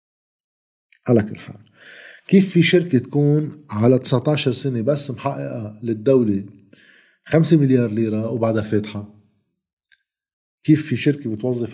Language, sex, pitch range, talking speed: Arabic, male, 115-145 Hz, 100 wpm